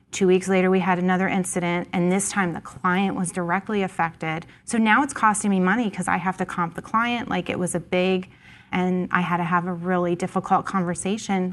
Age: 30-49